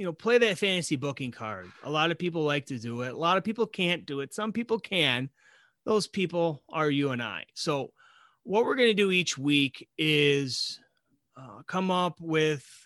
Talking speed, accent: 205 wpm, American